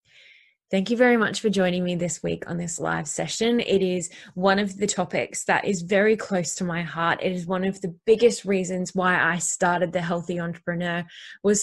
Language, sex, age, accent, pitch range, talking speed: English, female, 20-39, Australian, 180-220 Hz, 205 wpm